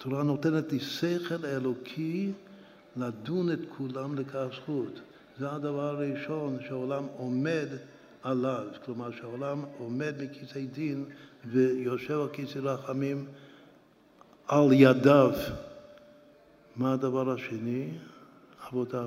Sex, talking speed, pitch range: male, 95 wpm, 120-140 Hz